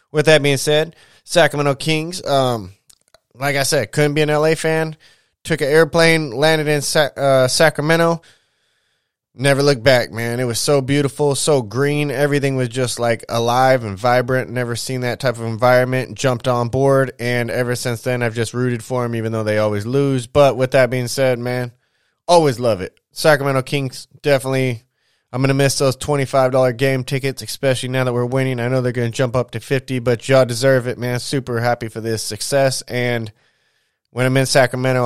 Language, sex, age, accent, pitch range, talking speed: English, male, 20-39, American, 120-140 Hz, 190 wpm